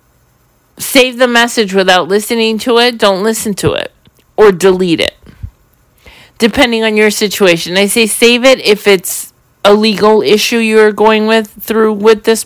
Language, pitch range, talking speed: English, 185-230 Hz, 165 wpm